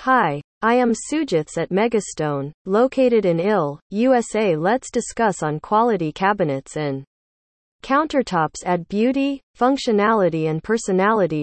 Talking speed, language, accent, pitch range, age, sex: 115 wpm, English, American, 160-230 Hz, 40-59, female